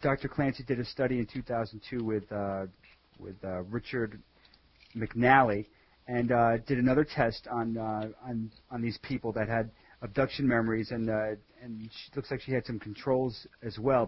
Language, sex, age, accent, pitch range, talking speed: English, male, 40-59, American, 115-145 Hz, 170 wpm